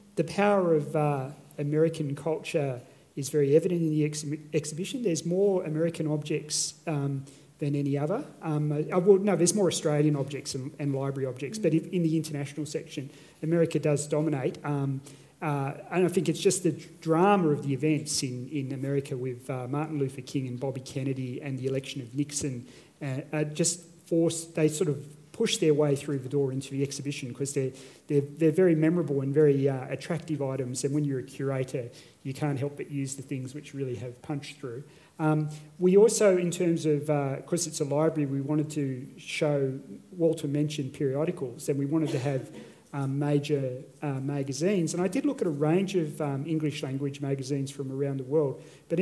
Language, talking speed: English, 195 wpm